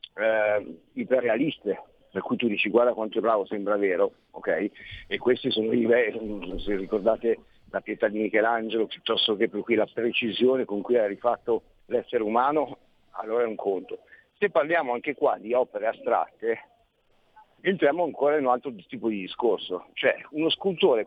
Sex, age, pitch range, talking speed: male, 50-69, 110-135 Hz, 165 wpm